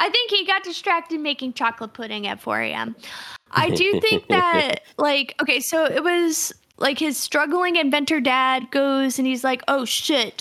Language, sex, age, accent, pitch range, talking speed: English, female, 10-29, American, 265-355 Hz, 180 wpm